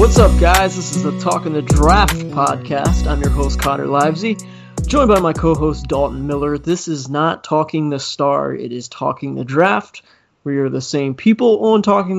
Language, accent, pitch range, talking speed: English, American, 135-150 Hz, 190 wpm